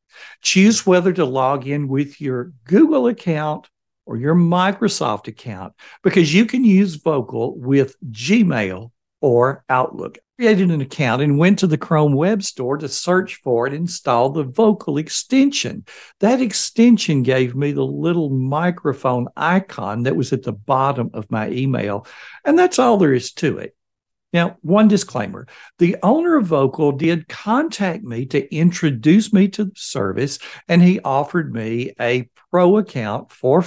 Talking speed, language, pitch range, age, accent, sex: 160 wpm, English, 135-205 Hz, 60-79, American, male